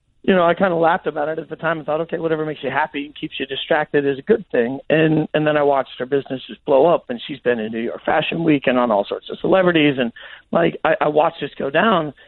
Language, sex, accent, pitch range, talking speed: English, male, American, 135-155 Hz, 285 wpm